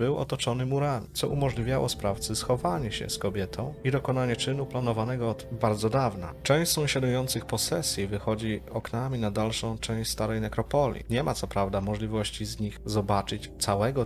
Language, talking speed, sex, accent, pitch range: Polish, 155 wpm, male, native, 105-135 Hz